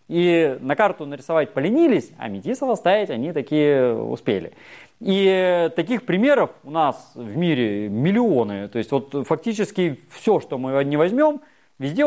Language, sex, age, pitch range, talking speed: Russian, male, 30-49, 140-220 Hz, 145 wpm